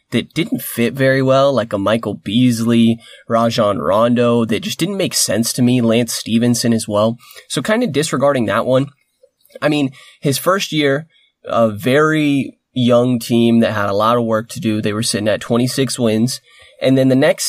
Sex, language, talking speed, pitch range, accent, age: male, English, 190 wpm, 115-145 Hz, American, 20-39